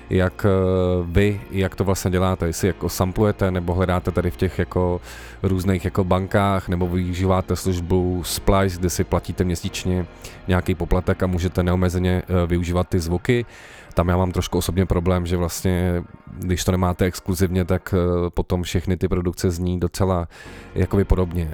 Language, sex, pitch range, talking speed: Czech, male, 85-95 Hz, 150 wpm